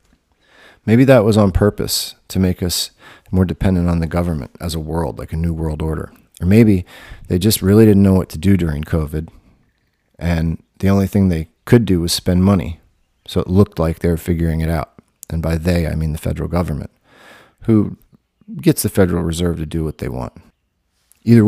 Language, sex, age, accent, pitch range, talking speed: English, male, 40-59, American, 80-100 Hz, 200 wpm